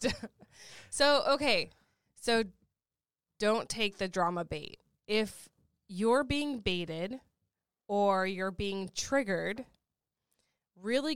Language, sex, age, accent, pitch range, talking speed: English, female, 20-39, American, 185-225 Hz, 90 wpm